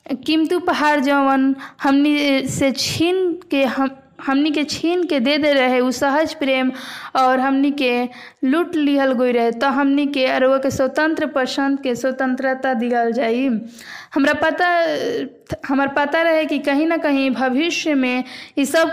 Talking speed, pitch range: 130 wpm, 260-300 Hz